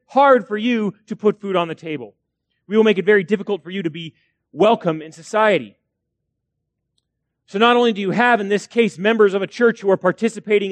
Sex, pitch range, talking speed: male, 155-215 Hz, 215 wpm